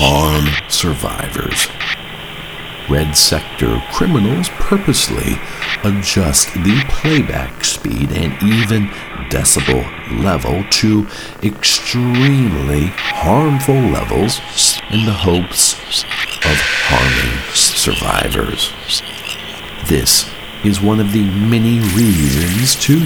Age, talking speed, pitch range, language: 60-79, 85 wpm, 70-115 Hz, English